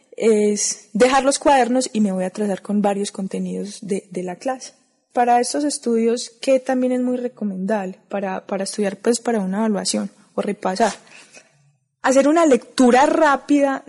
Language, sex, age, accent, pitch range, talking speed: Spanish, female, 20-39, Colombian, 210-255 Hz, 160 wpm